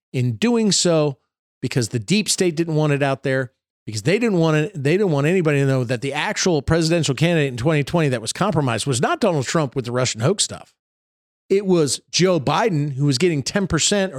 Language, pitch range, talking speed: English, 130-175 Hz, 210 wpm